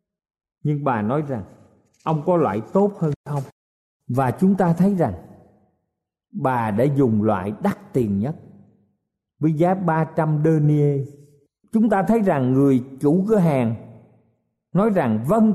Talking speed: 145 wpm